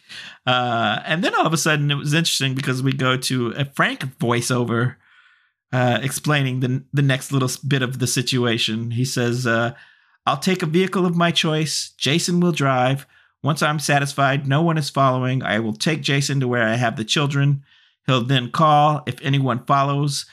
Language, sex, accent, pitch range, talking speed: English, male, American, 120-140 Hz, 185 wpm